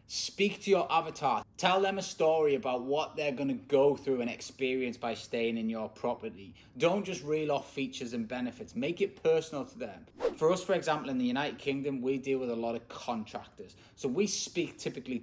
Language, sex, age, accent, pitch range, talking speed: English, male, 20-39, British, 115-155 Hz, 205 wpm